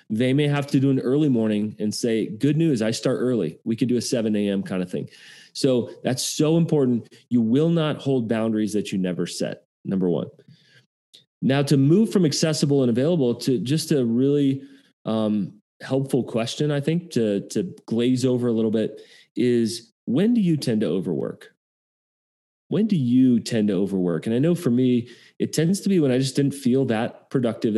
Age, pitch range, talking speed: 30-49, 115-145 Hz, 195 wpm